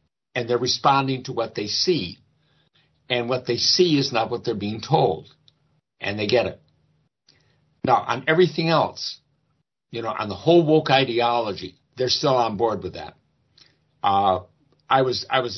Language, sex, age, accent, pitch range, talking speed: English, male, 60-79, American, 105-135 Hz, 165 wpm